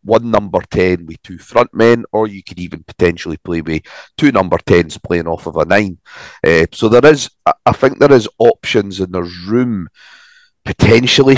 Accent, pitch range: British, 85-105 Hz